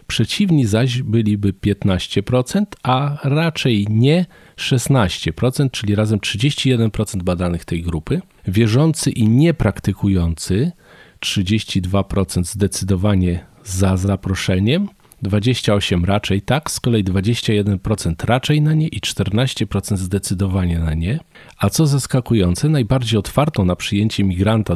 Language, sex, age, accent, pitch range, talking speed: Polish, male, 40-59, native, 95-130 Hz, 105 wpm